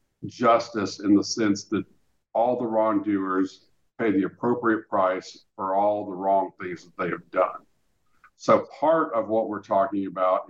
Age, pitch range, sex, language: 50-69, 100-145 Hz, male, English